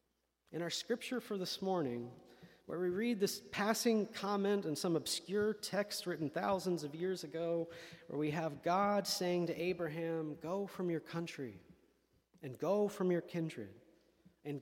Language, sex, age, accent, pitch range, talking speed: English, male, 40-59, American, 150-185 Hz, 155 wpm